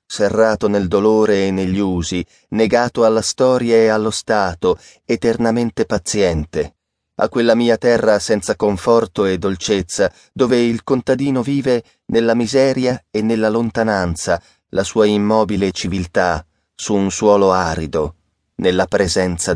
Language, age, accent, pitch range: Italian, 30-49, native, 90-125 Hz